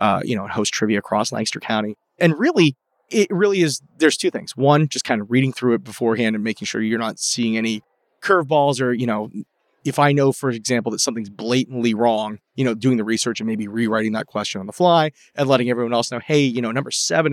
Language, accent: English, American